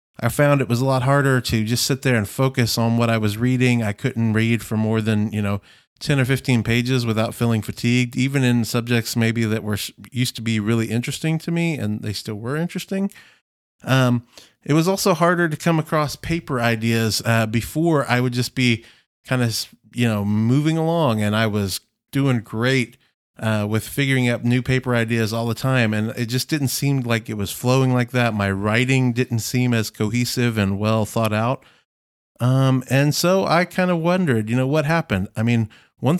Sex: male